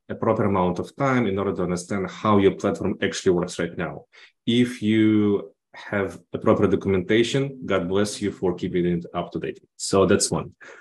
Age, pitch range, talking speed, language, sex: 20-39, 100-115 Hz, 190 wpm, Portuguese, male